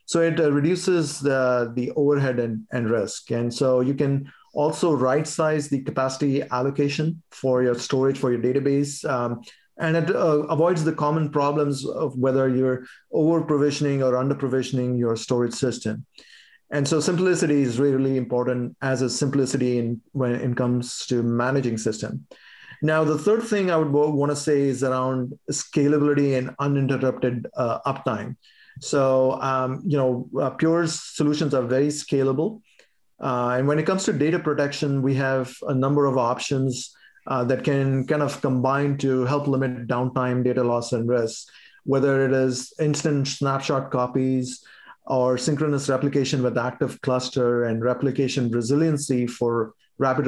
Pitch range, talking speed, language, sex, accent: 125-145 Hz, 155 wpm, English, male, Indian